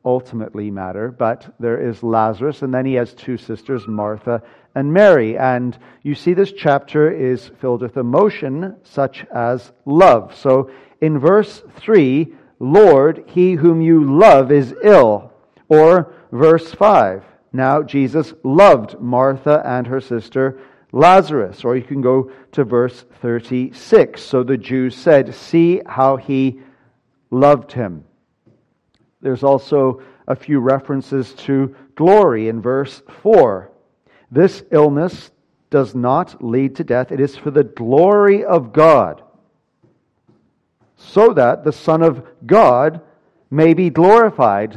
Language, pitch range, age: English, 125-160 Hz, 50-69